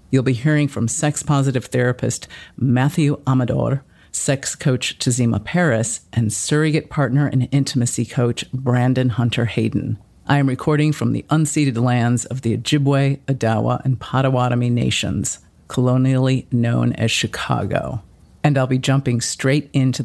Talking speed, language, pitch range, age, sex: 130 wpm, English, 120-145 Hz, 50-69, female